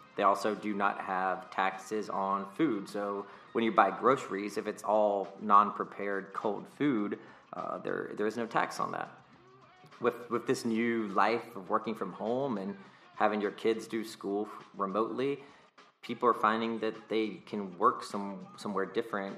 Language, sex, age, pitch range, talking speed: English, male, 30-49, 100-115 Hz, 165 wpm